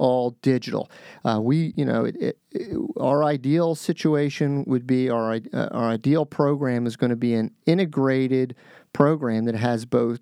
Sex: male